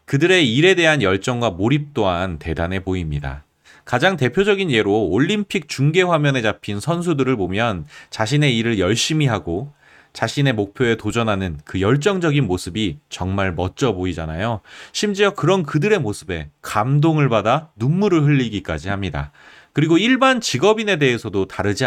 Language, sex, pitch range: Korean, male, 95-155 Hz